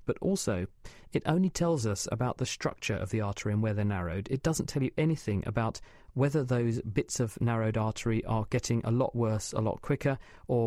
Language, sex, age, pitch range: English, male, 40-59, 110-135 Hz